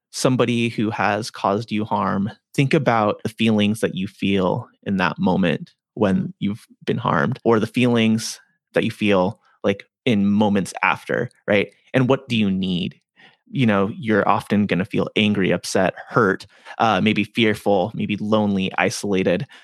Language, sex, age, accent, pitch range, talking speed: English, male, 30-49, American, 100-125 Hz, 155 wpm